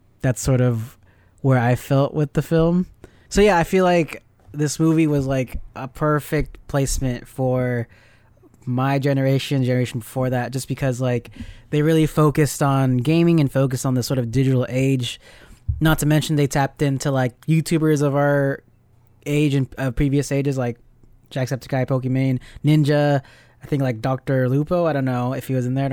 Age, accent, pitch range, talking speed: 20-39, American, 125-145 Hz, 175 wpm